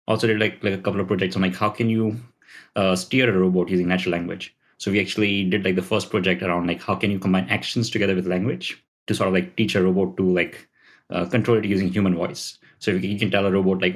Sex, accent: male, Indian